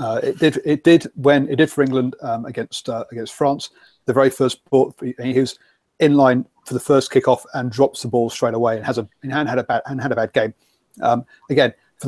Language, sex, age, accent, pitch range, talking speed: English, male, 40-59, British, 120-135 Hz, 240 wpm